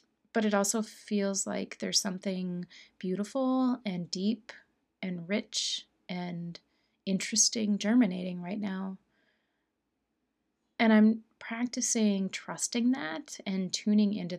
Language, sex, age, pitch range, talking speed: English, female, 30-49, 185-230 Hz, 105 wpm